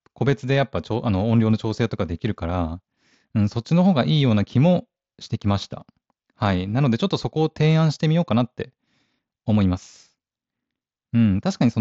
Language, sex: Japanese, male